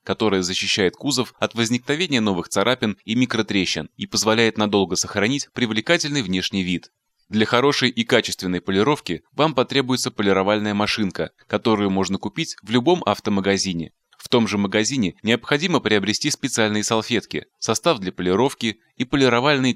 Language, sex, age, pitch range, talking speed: Russian, male, 20-39, 100-125 Hz, 135 wpm